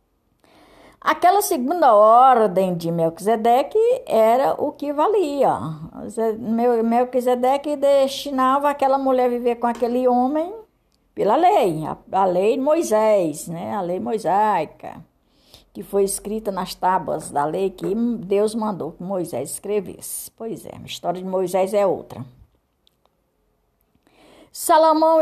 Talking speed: 115 wpm